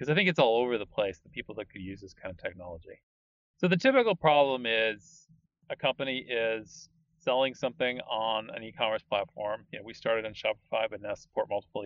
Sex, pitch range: male, 105-145 Hz